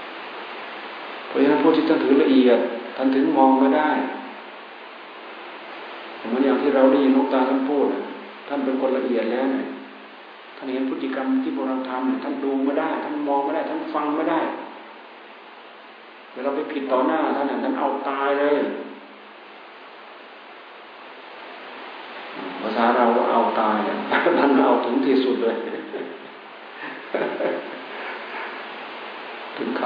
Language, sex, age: Thai, male, 60-79